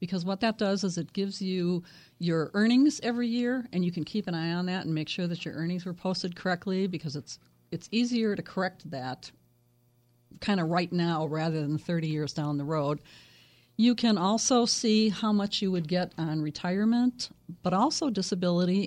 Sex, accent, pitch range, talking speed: female, American, 155-195 Hz, 195 wpm